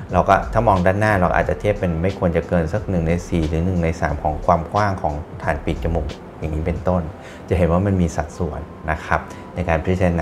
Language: Thai